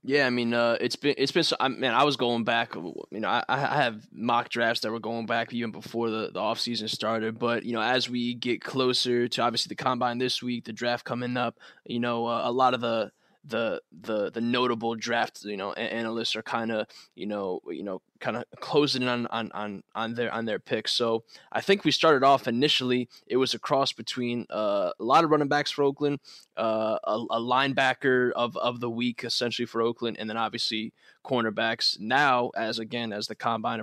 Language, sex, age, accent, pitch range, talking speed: English, male, 10-29, American, 115-125 Hz, 215 wpm